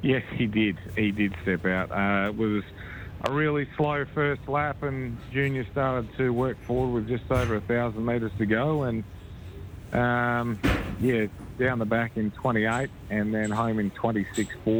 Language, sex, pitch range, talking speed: English, male, 100-120 Hz, 165 wpm